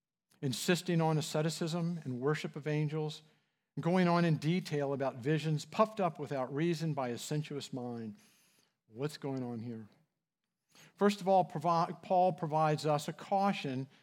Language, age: English, 50-69